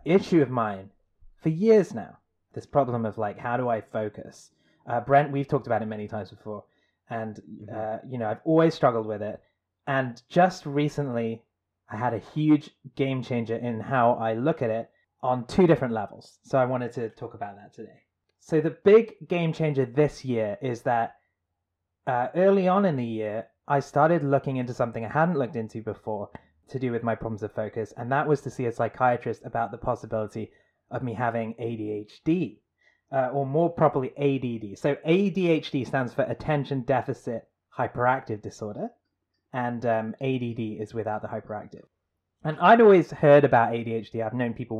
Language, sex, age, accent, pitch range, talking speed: English, male, 20-39, British, 110-140 Hz, 180 wpm